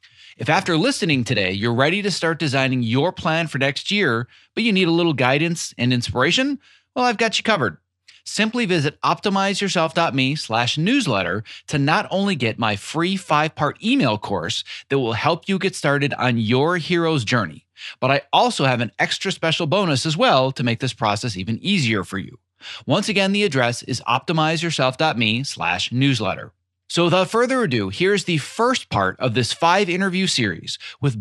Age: 30-49